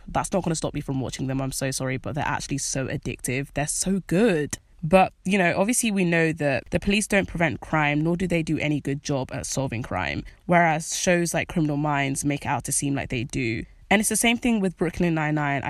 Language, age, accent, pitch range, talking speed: English, 10-29, British, 140-165 Hz, 235 wpm